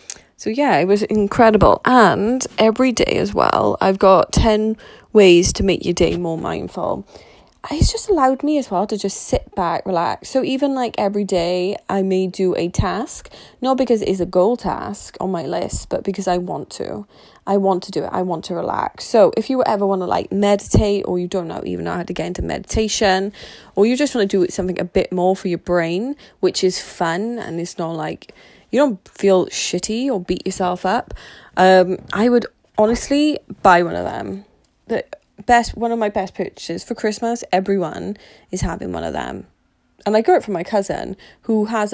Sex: female